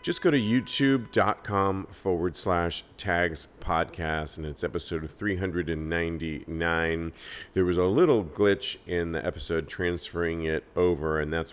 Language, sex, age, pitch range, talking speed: English, male, 40-59, 80-105 Hz, 130 wpm